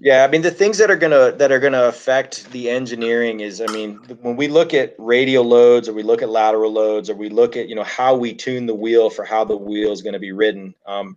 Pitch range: 110-160 Hz